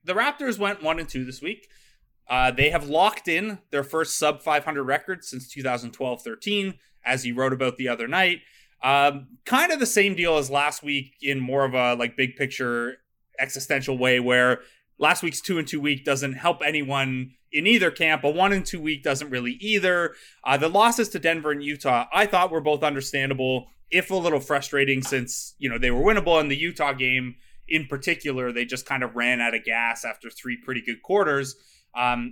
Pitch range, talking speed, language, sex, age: 130-170 Hz, 200 wpm, English, male, 30-49